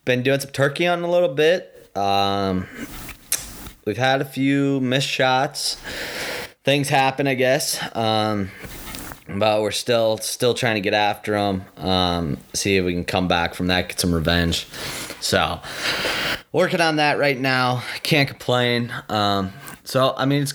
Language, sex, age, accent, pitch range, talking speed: English, male, 20-39, American, 95-125 Hz, 160 wpm